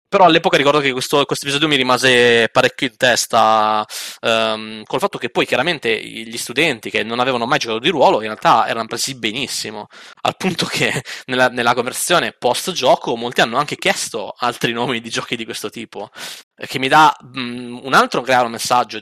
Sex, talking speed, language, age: male, 175 wpm, Italian, 20-39